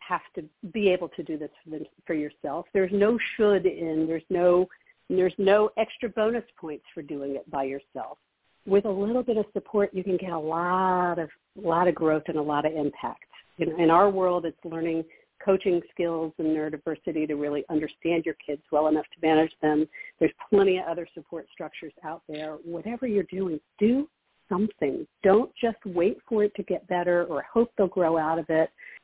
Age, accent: 50-69, American